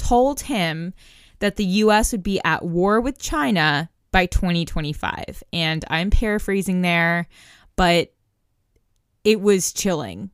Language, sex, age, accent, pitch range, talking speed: English, female, 20-39, American, 175-215 Hz, 120 wpm